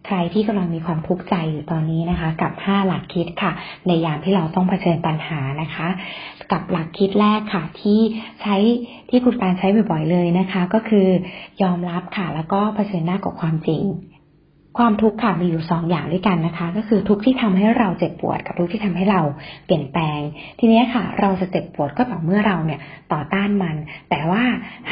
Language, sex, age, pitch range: Thai, female, 20-39, 165-195 Hz